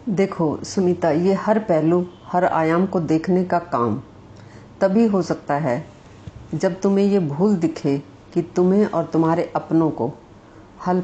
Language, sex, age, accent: Hindi, female, 50-69, native